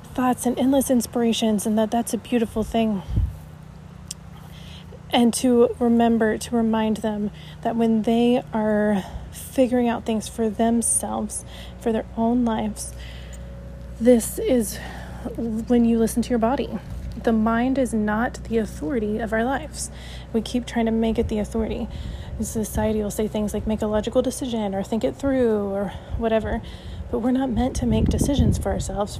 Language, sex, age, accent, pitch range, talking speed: English, female, 30-49, American, 210-245 Hz, 160 wpm